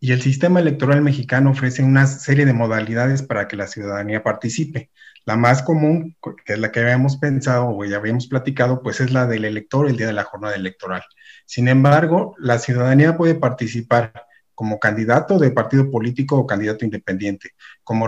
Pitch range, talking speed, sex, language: 115-145 Hz, 180 wpm, male, Spanish